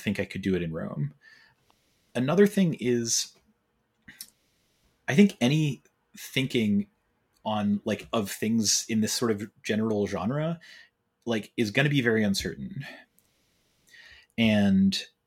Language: English